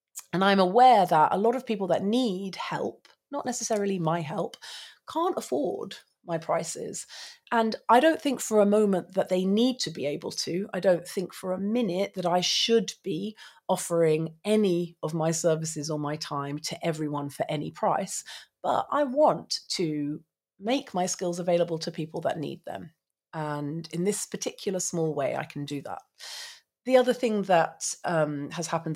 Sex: female